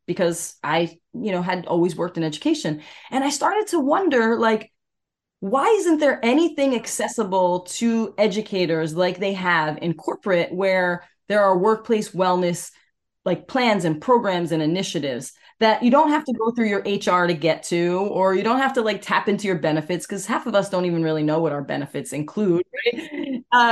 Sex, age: female, 20-39